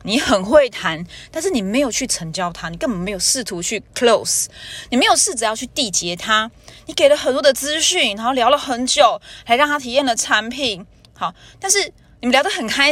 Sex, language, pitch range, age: female, Chinese, 195-280 Hz, 20-39